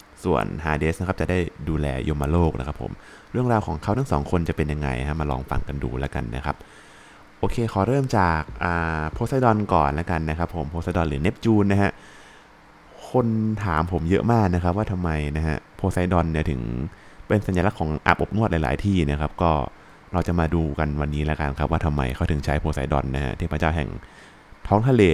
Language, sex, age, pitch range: Thai, male, 20-39, 75-100 Hz